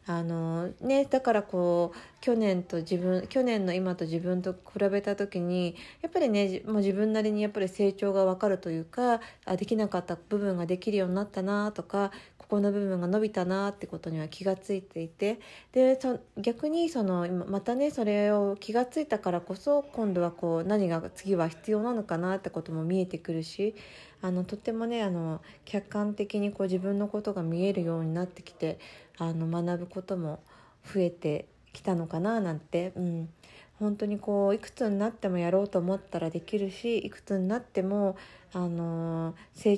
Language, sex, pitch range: Japanese, female, 175-215 Hz